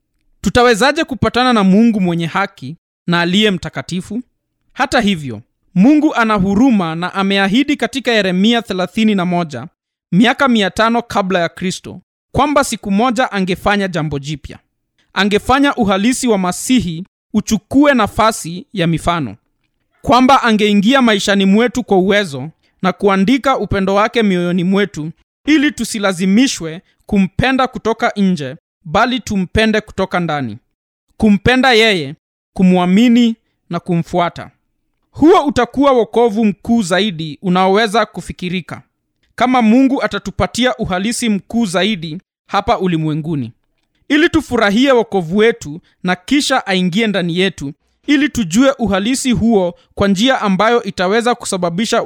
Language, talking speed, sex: Swahili, 110 wpm, male